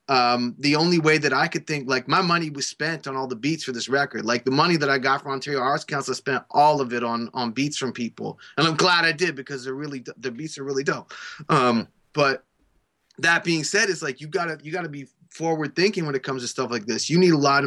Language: English